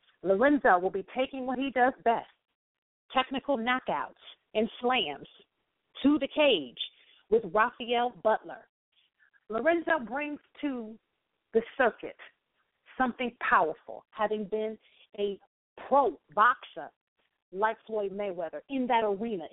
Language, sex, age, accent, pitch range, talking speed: English, female, 40-59, American, 190-255 Hz, 110 wpm